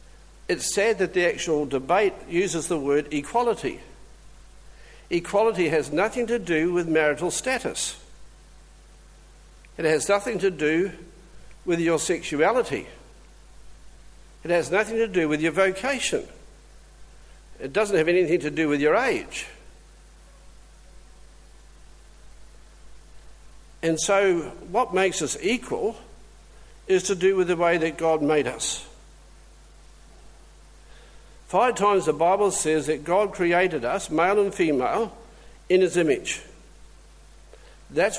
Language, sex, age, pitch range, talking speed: English, male, 60-79, 155-205 Hz, 120 wpm